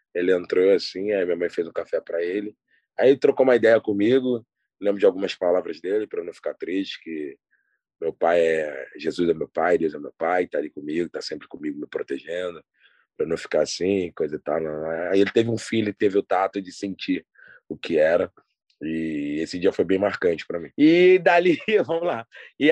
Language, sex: Portuguese, male